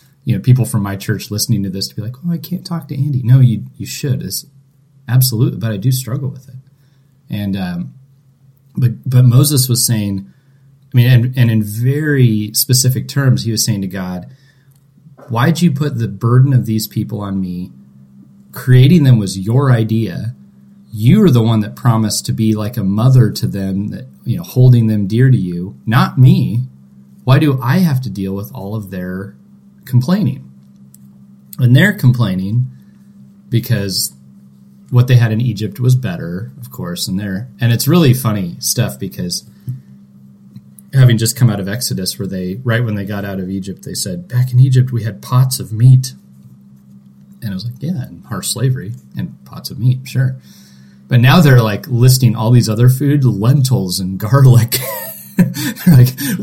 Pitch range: 95-130 Hz